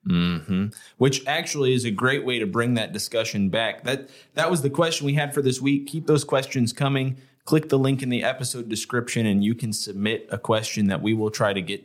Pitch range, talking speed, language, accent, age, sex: 105-135 Hz, 230 wpm, English, American, 30-49, male